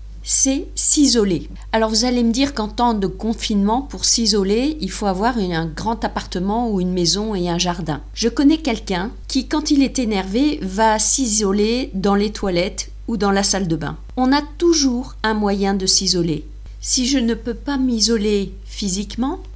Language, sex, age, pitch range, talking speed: French, female, 50-69, 200-255 Hz, 180 wpm